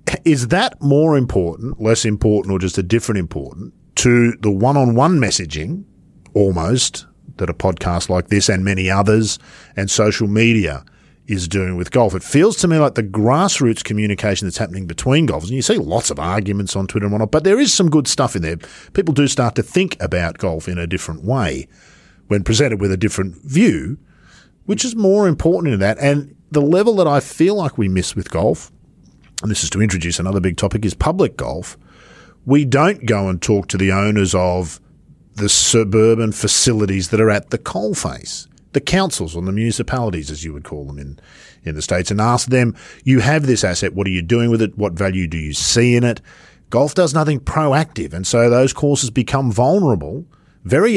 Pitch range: 95-135 Hz